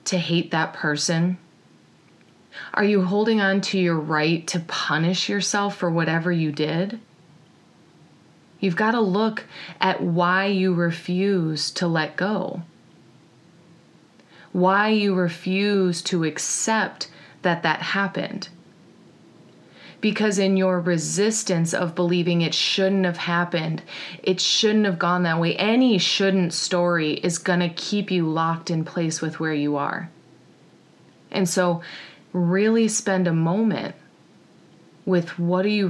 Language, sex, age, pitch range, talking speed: English, female, 30-49, 170-195 Hz, 130 wpm